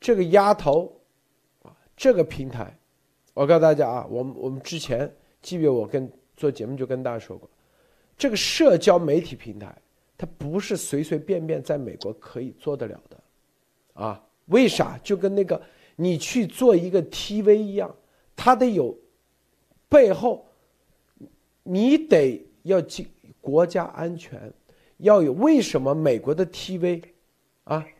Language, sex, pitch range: Chinese, male, 145-210 Hz